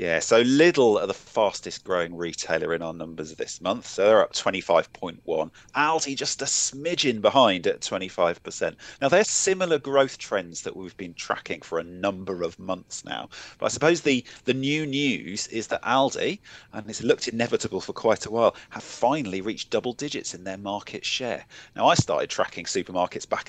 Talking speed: 185 wpm